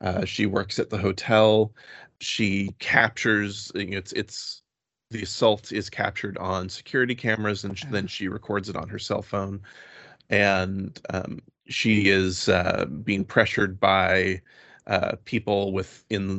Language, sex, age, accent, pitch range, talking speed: English, male, 30-49, American, 95-110 Hz, 145 wpm